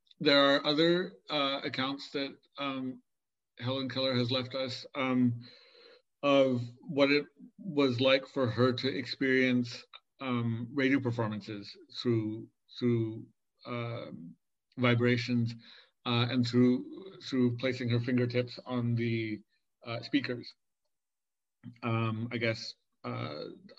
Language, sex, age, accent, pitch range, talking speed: English, male, 50-69, American, 120-140 Hz, 110 wpm